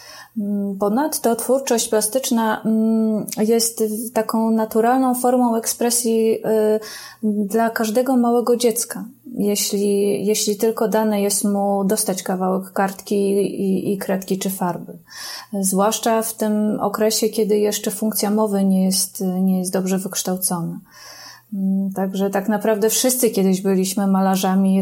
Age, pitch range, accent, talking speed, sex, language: 20-39, 200-230 Hz, native, 115 wpm, female, Polish